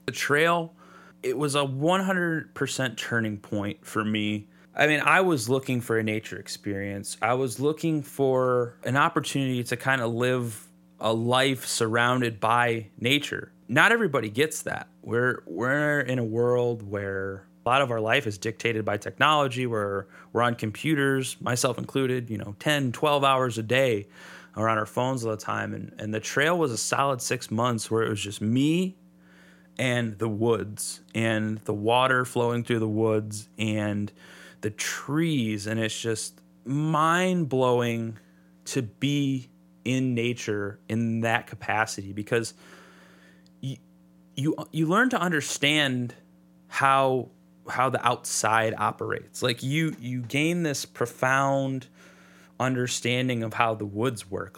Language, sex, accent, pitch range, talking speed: English, male, American, 105-135 Hz, 150 wpm